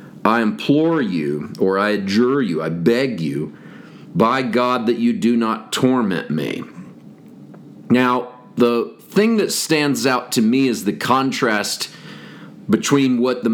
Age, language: 40-59, English